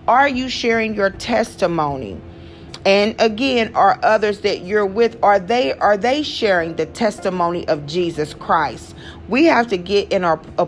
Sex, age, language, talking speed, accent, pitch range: female, 40-59, English, 165 wpm, American, 170-230 Hz